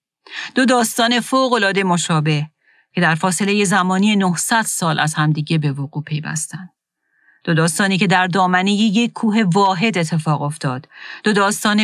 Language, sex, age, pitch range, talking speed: Persian, female, 40-59, 155-200 Hz, 135 wpm